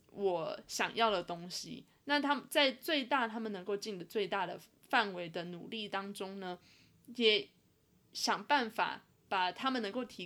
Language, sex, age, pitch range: Chinese, female, 20-39, 185-255 Hz